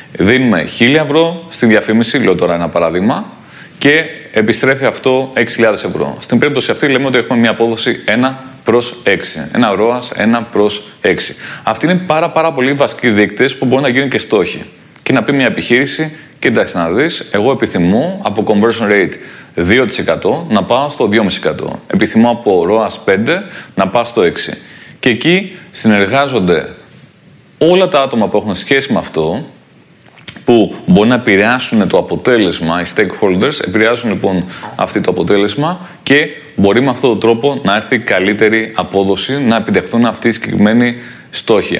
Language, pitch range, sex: Greek, 105-140 Hz, male